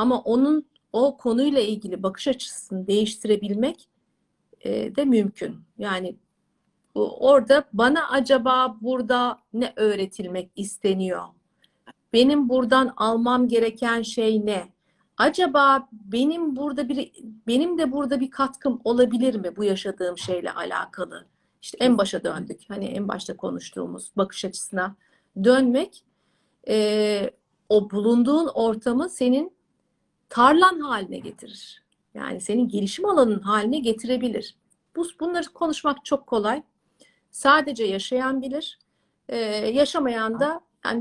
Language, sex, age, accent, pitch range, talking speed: Turkish, female, 50-69, native, 215-270 Hz, 115 wpm